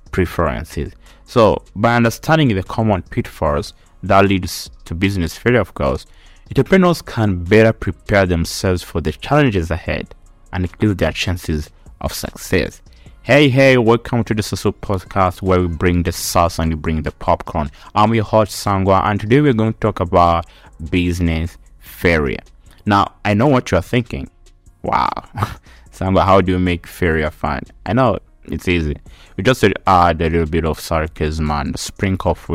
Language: English